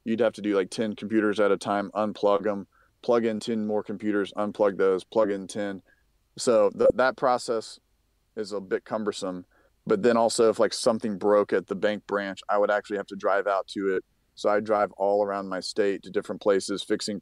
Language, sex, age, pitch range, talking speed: English, male, 30-49, 100-110 Hz, 210 wpm